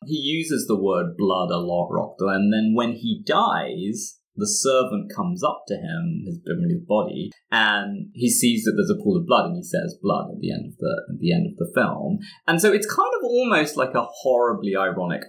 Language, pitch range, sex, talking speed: English, 140-200 Hz, male, 215 wpm